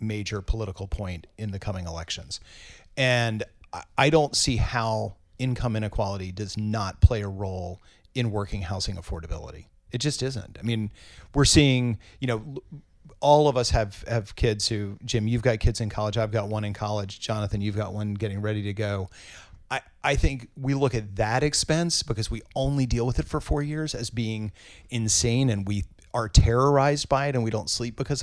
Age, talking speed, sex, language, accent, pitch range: 40-59, 190 wpm, male, English, American, 100-125 Hz